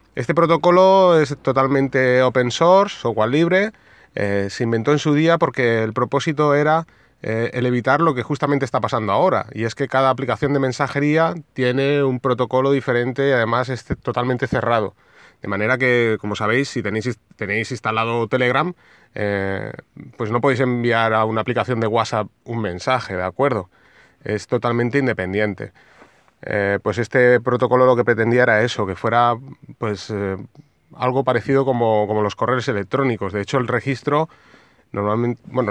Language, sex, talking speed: Spanish, male, 160 wpm